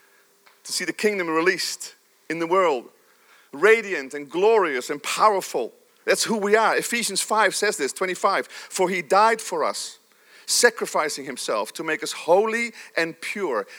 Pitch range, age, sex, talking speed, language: 180-255 Hz, 40-59, male, 150 wpm, English